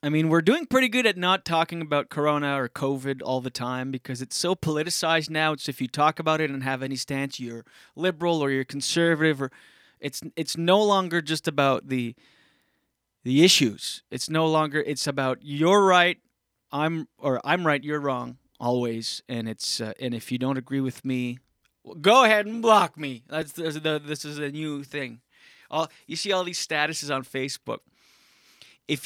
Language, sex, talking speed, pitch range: English, male, 195 wpm, 130-160 Hz